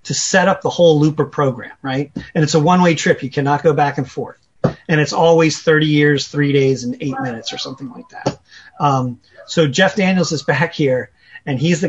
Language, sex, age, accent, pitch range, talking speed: English, male, 30-49, American, 135-165 Hz, 215 wpm